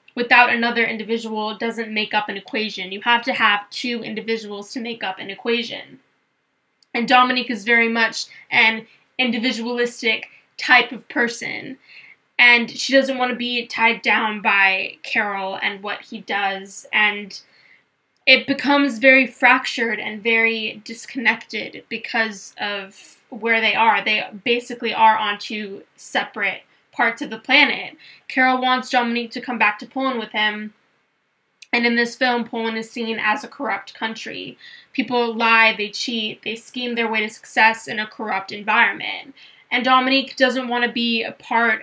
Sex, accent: female, American